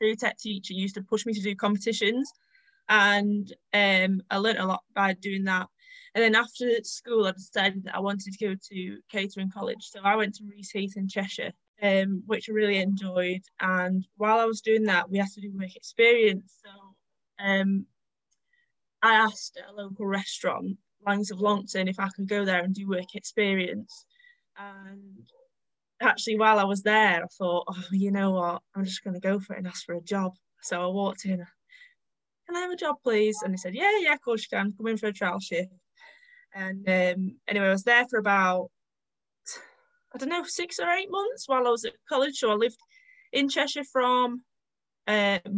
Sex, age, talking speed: female, 10-29, 195 wpm